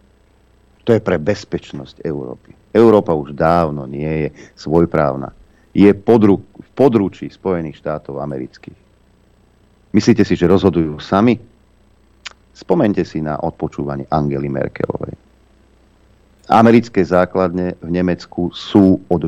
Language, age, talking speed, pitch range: Slovak, 50-69, 110 wpm, 80-100 Hz